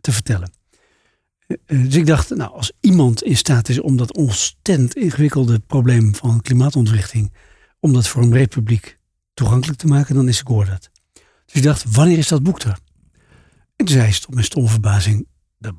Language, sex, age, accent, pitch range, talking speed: Dutch, male, 60-79, Dutch, 110-140 Hz, 175 wpm